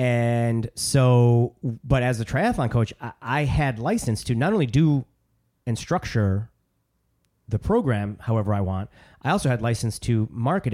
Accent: American